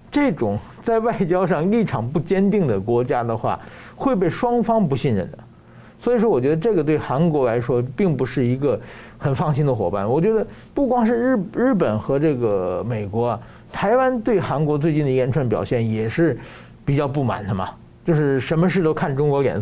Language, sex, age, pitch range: Chinese, male, 50-69, 120-185 Hz